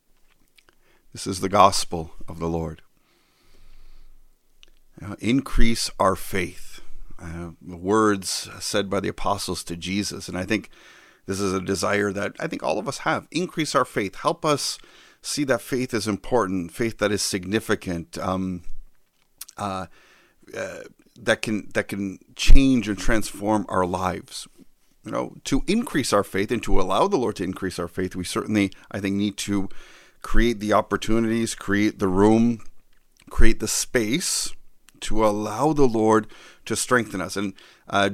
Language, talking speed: English, 155 wpm